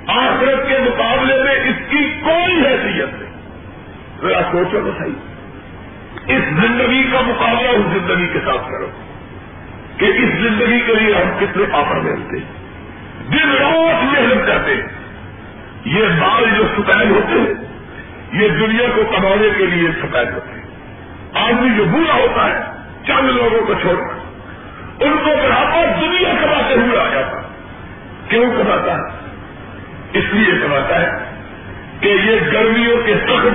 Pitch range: 215-295 Hz